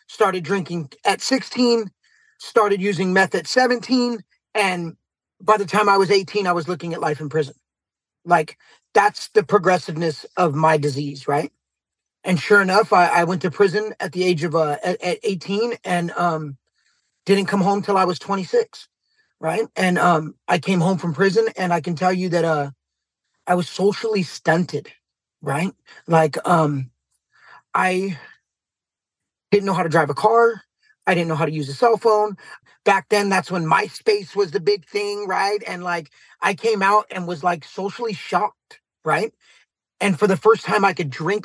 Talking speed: 180 wpm